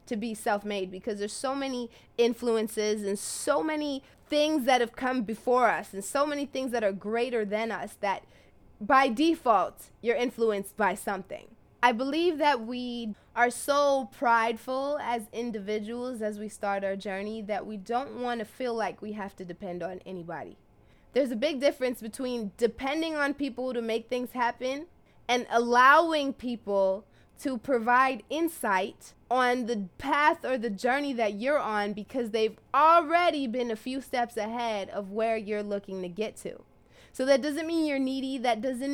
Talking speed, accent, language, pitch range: 170 wpm, American, English, 215-270 Hz